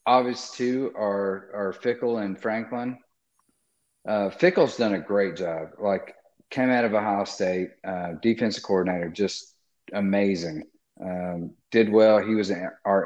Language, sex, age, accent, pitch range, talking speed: English, male, 40-59, American, 95-120 Hz, 140 wpm